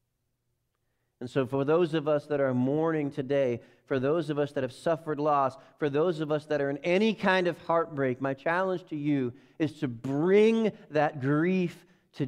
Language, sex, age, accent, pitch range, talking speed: English, male, 40-59, American, 120-160 Hz, 190 wpm